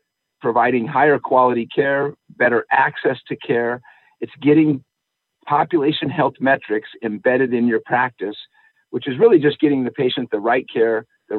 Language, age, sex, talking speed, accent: English, 50-69, male, 150 wpm, American